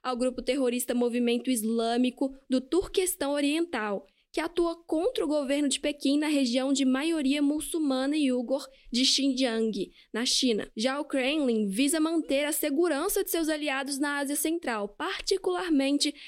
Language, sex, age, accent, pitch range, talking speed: Portuguese, female, 10-29, Brazilian, 250-310 Hz, 145 wpm